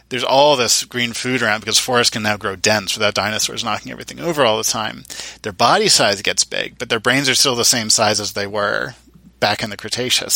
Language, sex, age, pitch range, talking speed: English, male, 20-39, 105-120 Hz, 230 wpm